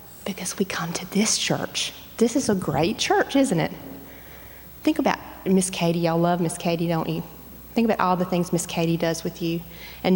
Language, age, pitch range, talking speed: English, 30-49, 180-245 Hz, 200 wpm